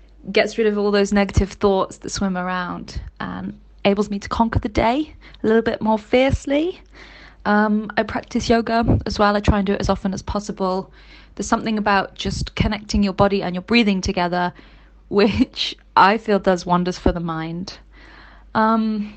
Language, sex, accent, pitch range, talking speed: English, female, British, 190-220 Hz, 180 wpm